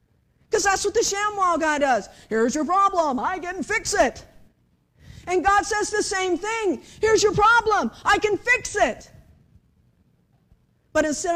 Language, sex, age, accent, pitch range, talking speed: English, female, 50-69, American, 220-330 Hz, 155 wpm